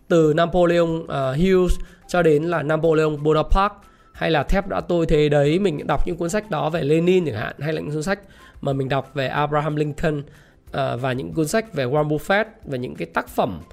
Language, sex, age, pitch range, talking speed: Vietnamese, male, 20-39, 145-190 Hz, 220 wpm